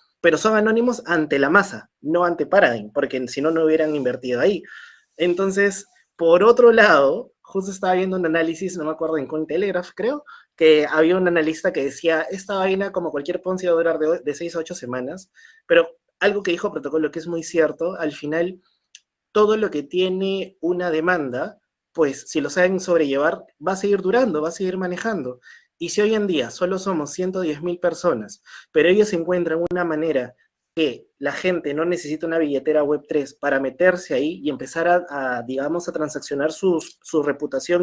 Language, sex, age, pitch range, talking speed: Spanish, male, 20-39, 160-205 Hz, 190 wpm